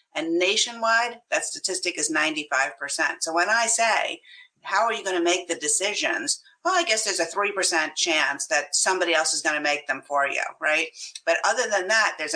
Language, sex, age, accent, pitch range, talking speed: English, female, 50-69, American, 155-200 Hz, 200 wpm